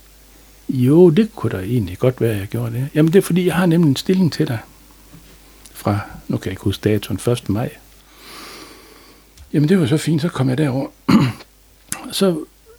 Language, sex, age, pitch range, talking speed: Danish, male, 60-79, 115-155 Hz, 190 wpm